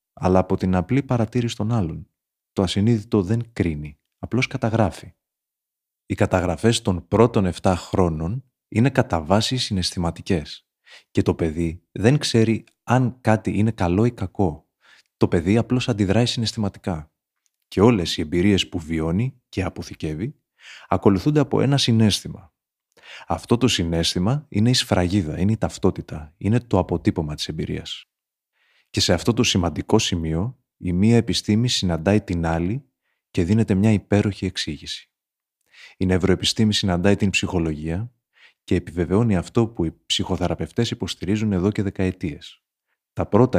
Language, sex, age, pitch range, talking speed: Greek, male, 30-49, 90-115 Hz, 170 wpm